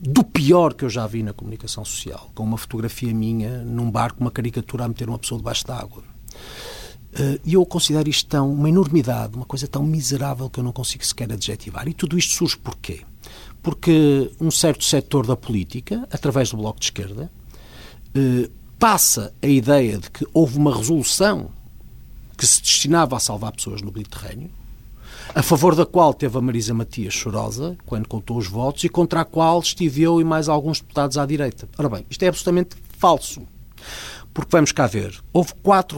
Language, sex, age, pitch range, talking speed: Portuguese, male, 50-69, 115-165 Hz, 185 wpm